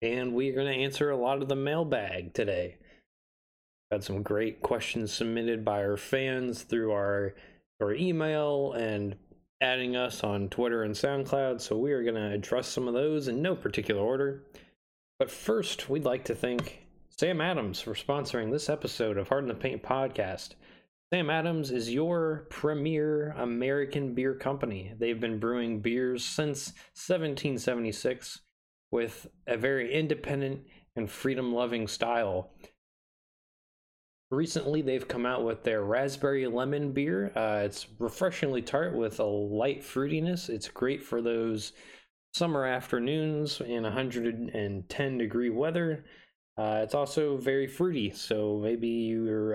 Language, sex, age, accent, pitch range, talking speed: English, male, 20-39, American, 110-140 Hz, 145 wpm